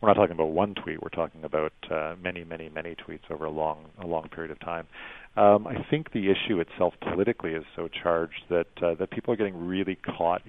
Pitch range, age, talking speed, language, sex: 80-90 Hz, 40-59, 230 wpm, English, male